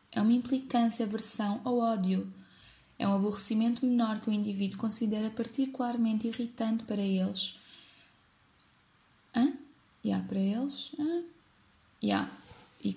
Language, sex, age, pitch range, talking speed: Portuguese, female, 20-39, 195-230 Hz, 110 wpm